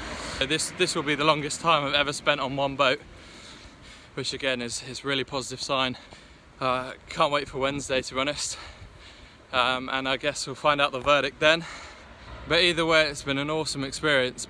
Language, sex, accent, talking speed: English, male, British, 190 wpm